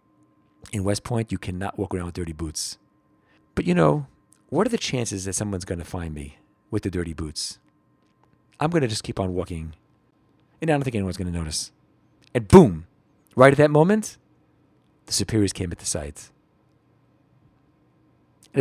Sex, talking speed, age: male, 175 wpm, 40-59